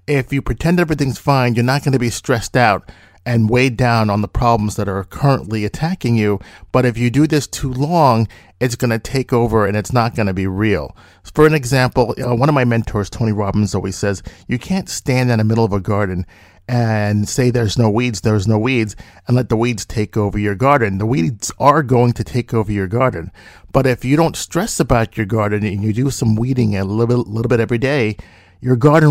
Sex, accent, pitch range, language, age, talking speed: male, American, 105-130 Hz, English, 40-59, 220 wpm